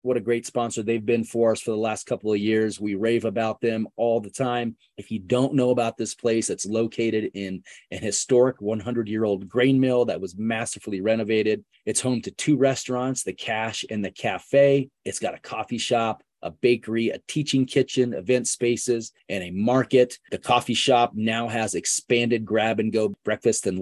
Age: 30-49